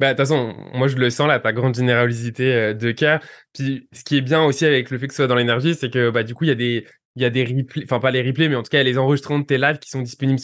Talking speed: 320 wpm